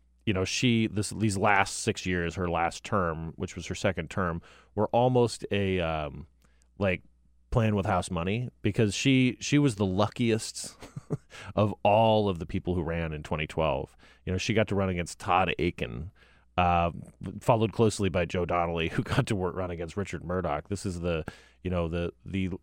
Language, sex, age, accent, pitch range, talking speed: English, male, 30-49, American, 85-110 Hz, 185 wpm